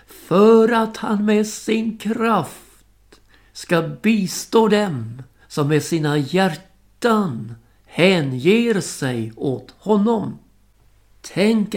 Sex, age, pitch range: male, 60-79, 120-195 Hz